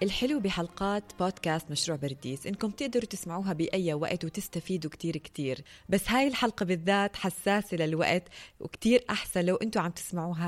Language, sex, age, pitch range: Arabic, female, 20-39, 165-200 Hz